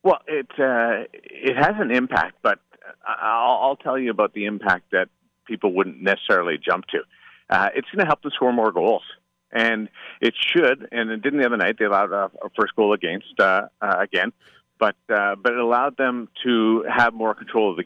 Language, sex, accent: English, male, American